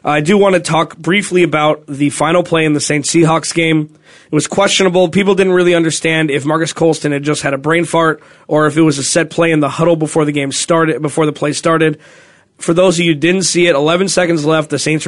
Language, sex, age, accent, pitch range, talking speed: English, male, 20-39, American, 145-170 Hz, 245 wpm